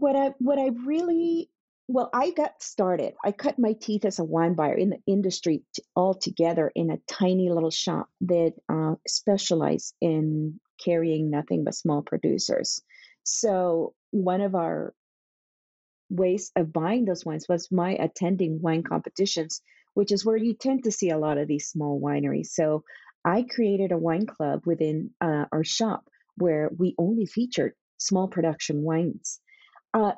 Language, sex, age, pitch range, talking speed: English, female, 40-59, 175-240 Hz, 160 wpm